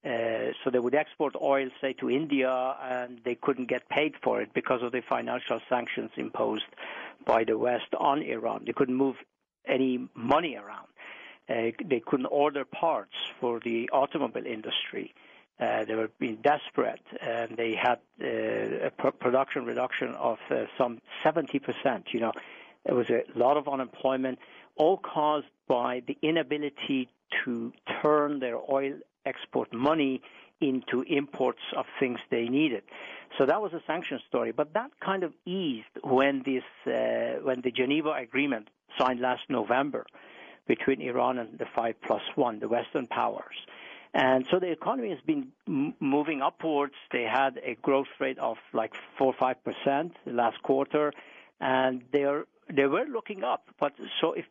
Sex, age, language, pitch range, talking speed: male, 60-79, English, 125-150 Hz, 165 wpm